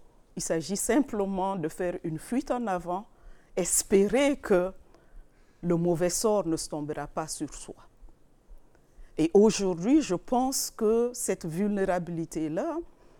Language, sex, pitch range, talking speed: French, female, 170-230 Hz, 125 wpm